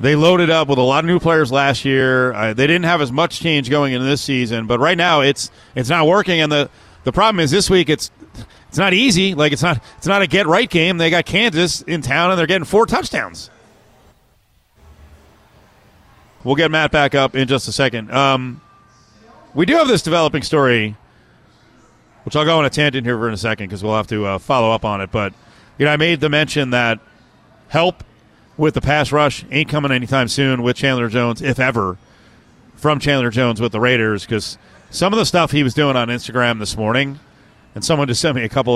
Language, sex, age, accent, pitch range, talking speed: English, male, 40-59, American, 115-150 Hz, 220 wpm